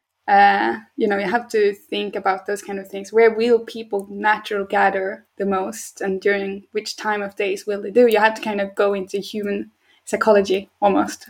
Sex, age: female, 20-39